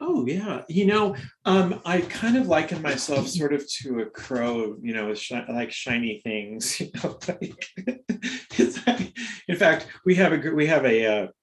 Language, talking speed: English, 175 wpm